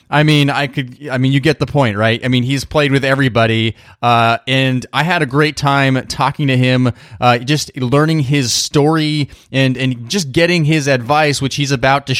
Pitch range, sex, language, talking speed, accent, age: 115-145 Hz, male, English, 205 wpm, American, 20-39